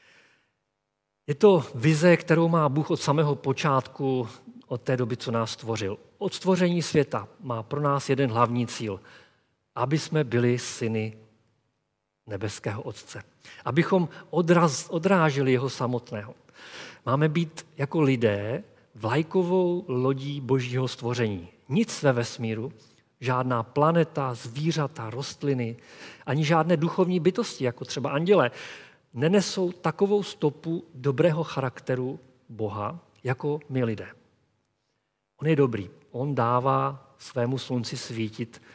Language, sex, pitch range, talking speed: Czech, male, 120-155 Hz, 115 wpm